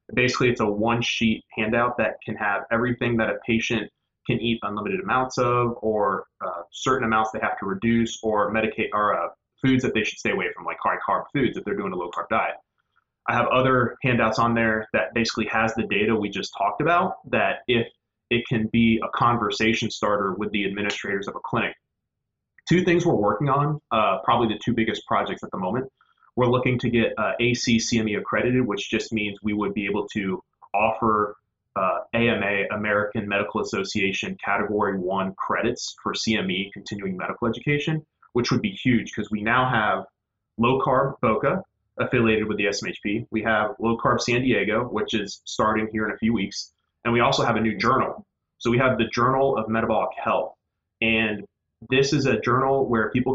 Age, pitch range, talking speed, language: 20-39, 105-125 Hz, 190 wpm, English